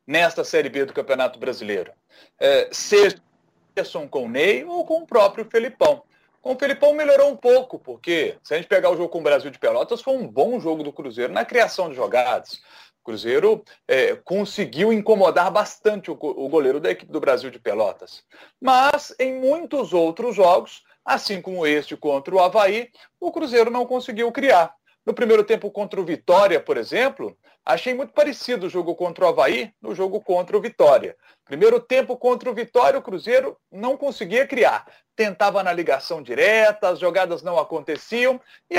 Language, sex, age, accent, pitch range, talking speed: Portuguese, male, 40-59, Brazilian, 200-280 Hz, 175 wpm